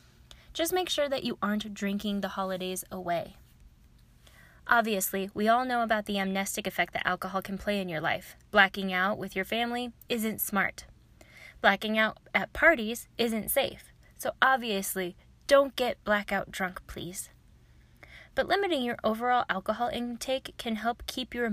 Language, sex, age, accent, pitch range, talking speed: English, female, 10-29, American, 190-230 Hz, 155 wpm